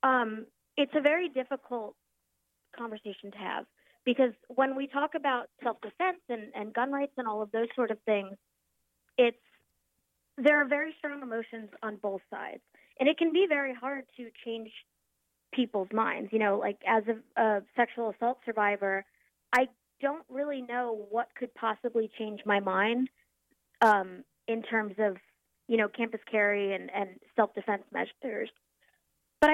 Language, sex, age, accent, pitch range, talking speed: English, female, 30-49, American, 210-255 Hz, 155 wpm